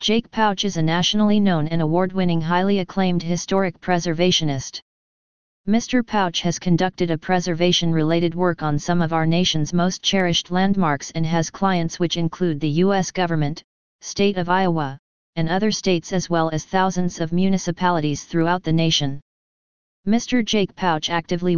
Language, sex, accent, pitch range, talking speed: English, female, American, 165-185 Hz, 150 wpm